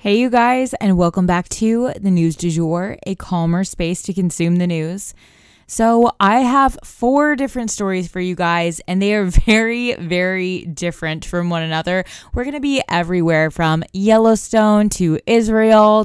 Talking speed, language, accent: 170 wpm, English, American